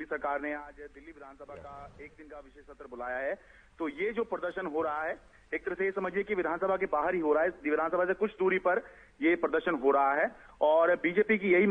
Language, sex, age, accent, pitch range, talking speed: Hindi, male, 30-49, native, 160-195 Hz, 235 wpm